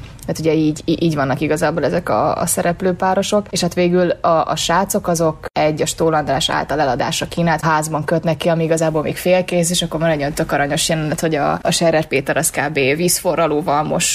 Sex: female